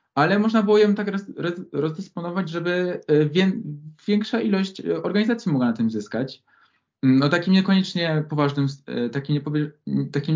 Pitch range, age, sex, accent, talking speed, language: 130-175 Hz, 20-39, male, native, 110 wpm, Polish